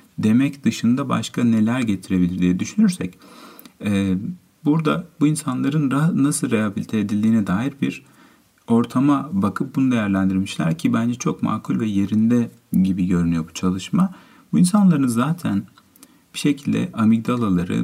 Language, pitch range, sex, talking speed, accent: Turkish, 95-150 Hz, male, 120 wpm, native